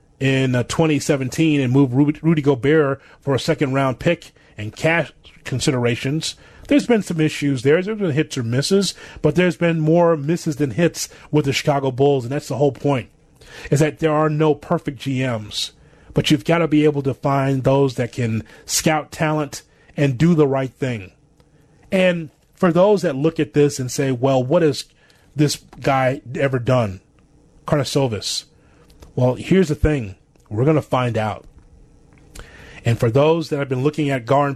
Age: 30-49